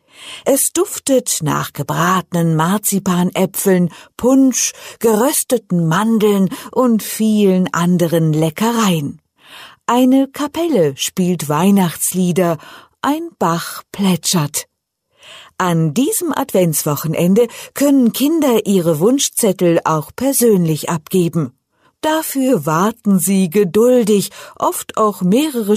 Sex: female